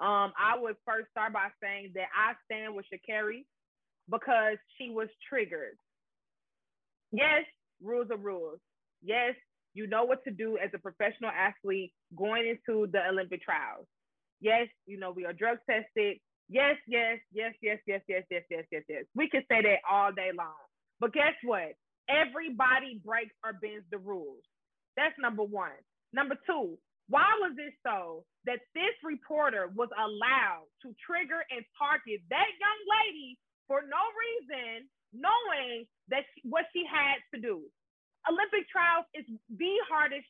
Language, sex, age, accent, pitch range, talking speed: English, female, 20-39, American, 215-300 Hz, 155 wpm